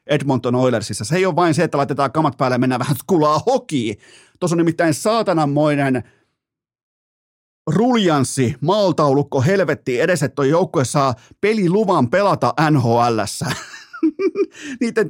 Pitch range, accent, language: 120-160 Hz, native, Finnish